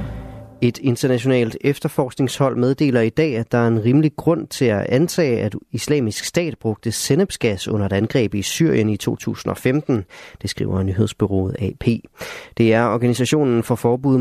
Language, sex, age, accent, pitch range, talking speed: Danish, male, 30-49, native, 105-140 Hz, 150 wpm